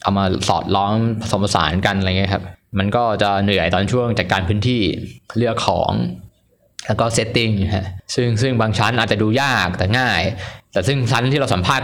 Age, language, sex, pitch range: 20-39, Thai, male, 100-120 Hz